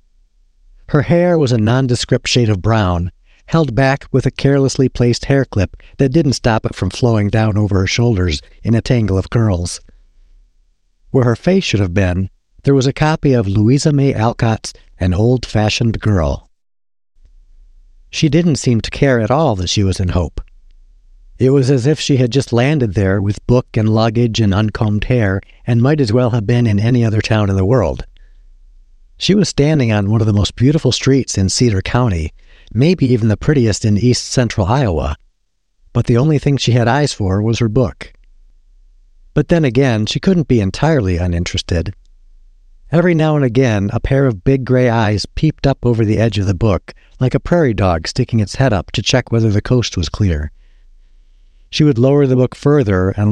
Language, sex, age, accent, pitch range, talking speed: English, male, 60-79, American, 90-130 Hz, 190 wpm